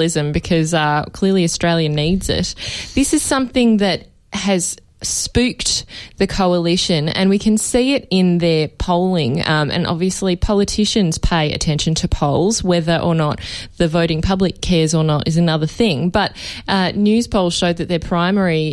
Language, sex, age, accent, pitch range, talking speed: English, female, 20-39, Australian, 155-180 Hz, 160 wpm